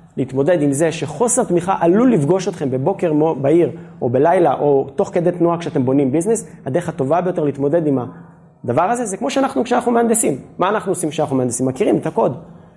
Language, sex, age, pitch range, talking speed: Hebrew, male, 20-39, 150-200 Hz, 180 wpm